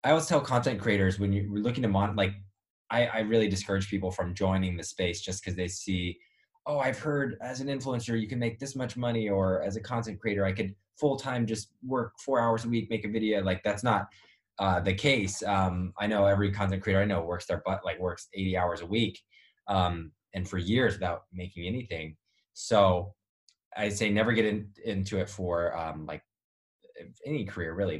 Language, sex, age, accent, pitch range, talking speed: English, male, 20-39, American, 90-110 Hz, 205 wpm